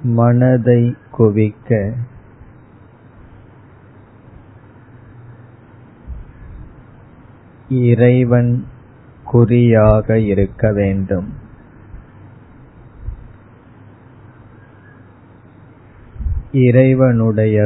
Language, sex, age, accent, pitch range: Tamil, male, 20-39, native, 100-120 Hz